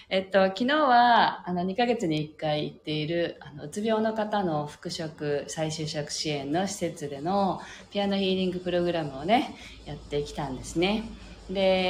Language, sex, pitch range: Japanese, female, 145-185 Hz